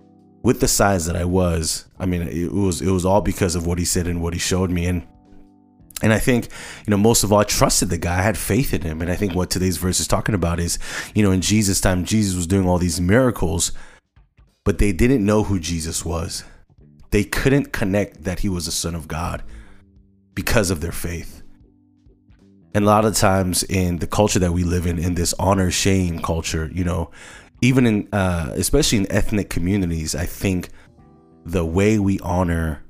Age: 30-49